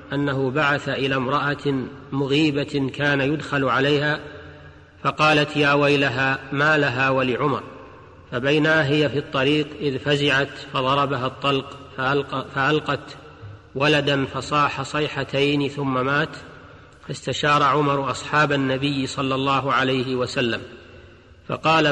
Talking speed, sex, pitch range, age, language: 100 wpm, male, 130-150 Hz, 40-59, Arabic